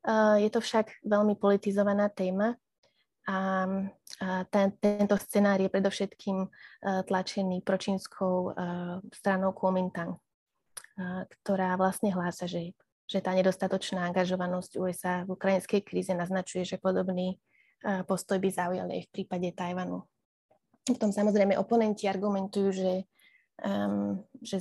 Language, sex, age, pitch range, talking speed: Slovak, female, 20-39, 185-205 Hz, 110 wpm